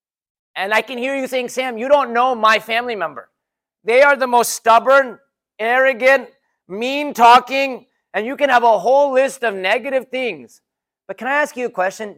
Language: English